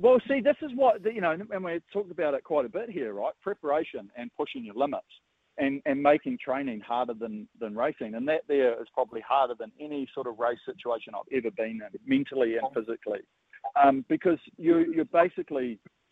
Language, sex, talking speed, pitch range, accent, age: English, male, 200 wpm, 130-175 Hz, Australian, 40-59